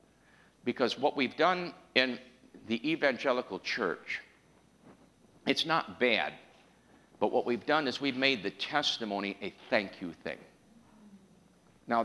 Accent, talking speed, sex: American, 125 wpm, male